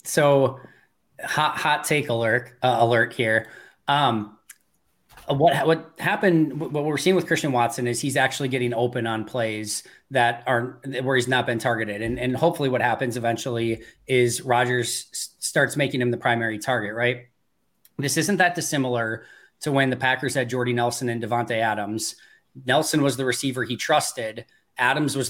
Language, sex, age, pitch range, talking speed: English, male, 20-39, 120-140 Hz, 165 wpm